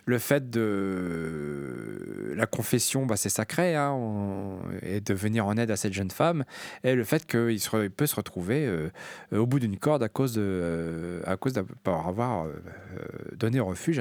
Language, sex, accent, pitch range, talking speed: French, male, French, 100-140 Hz, 160 wpm